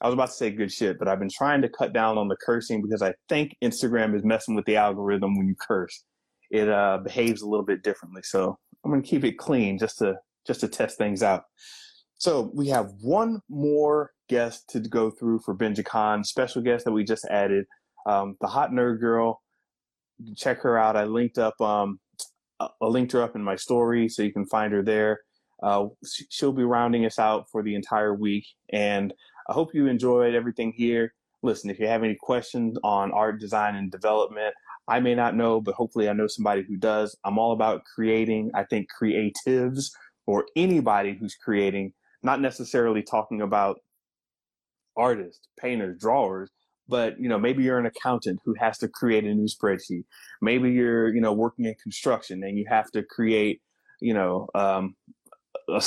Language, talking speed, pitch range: English, 195 wpm, 105-120 Hz